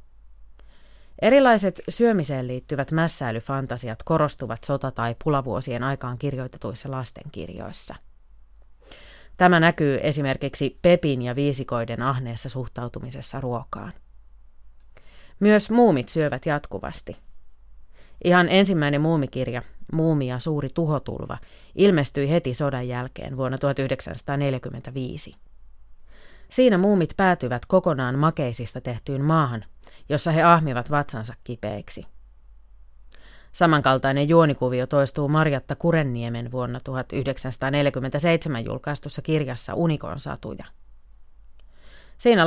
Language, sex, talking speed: Finnish, female, 85 wpm